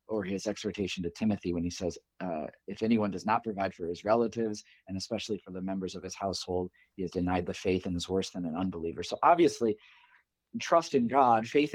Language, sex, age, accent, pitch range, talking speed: English, male, 40-59, American, 95-120 Hz, 215 wpm